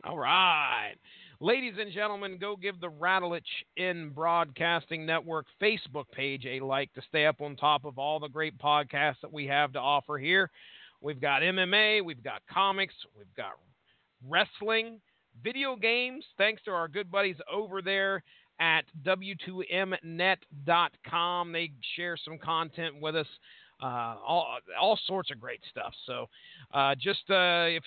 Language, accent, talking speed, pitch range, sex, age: English, American, 150 wpm, 160-205 Hz, male, 40-59